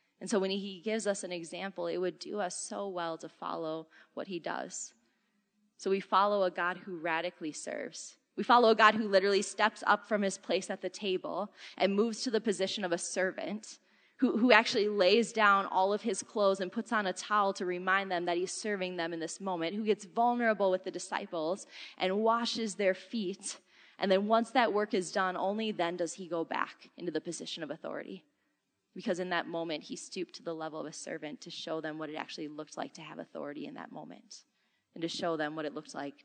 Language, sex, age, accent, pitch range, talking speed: English, female, 20-39, American, 170-210 Hz, 225 wpm